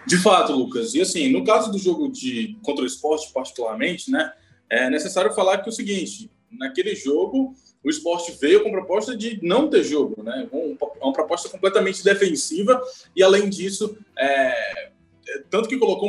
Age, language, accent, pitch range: 20-39, Portuguese, Brazilian, 175-260 Hz